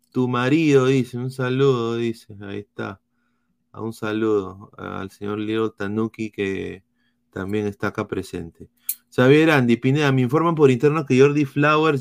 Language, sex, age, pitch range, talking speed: Spanish, male, 30-49, 115-145 Hz, 145 wpm